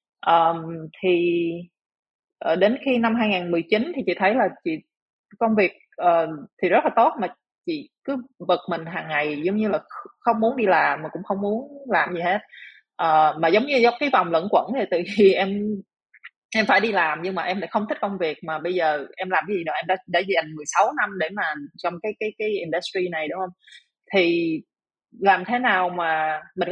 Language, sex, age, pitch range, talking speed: Vietnamese, female, 20-39, 170-225 Hz, 210 wpm